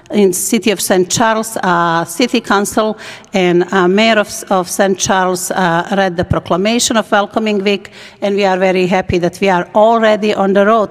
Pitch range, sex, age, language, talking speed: 190-220 Hz, female, 50-69, English, 185 wpm